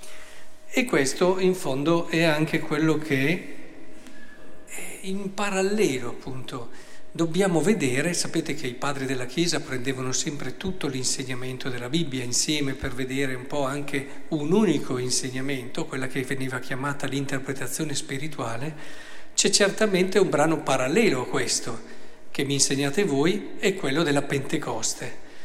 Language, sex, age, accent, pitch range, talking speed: Italian, male, 50-69, native, 135-165 Hz, 130 wpm